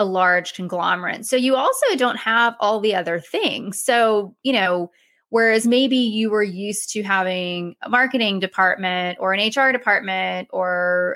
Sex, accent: female, American